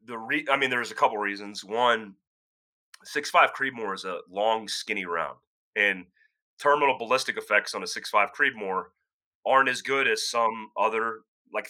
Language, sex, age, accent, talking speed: English, male, 30-49, American, 165 wpm